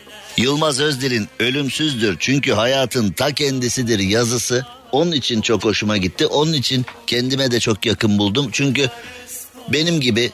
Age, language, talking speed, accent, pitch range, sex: 50-69, Turkish, 135 wpm, native, 115-150 Hz, male